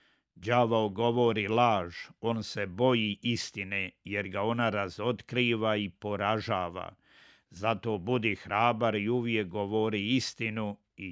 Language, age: Croatian, 50-69